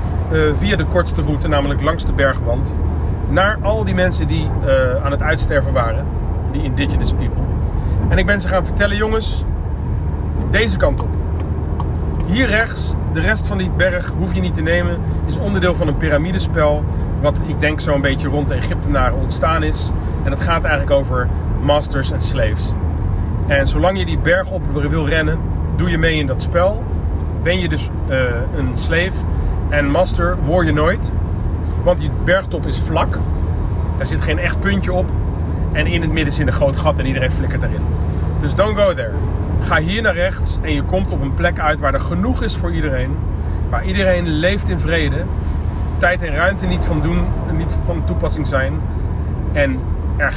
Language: Dutch